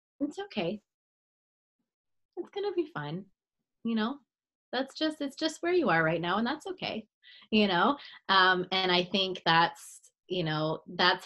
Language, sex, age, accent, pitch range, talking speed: English, female, 20-39, American, 170-220 Hz, 160 wpm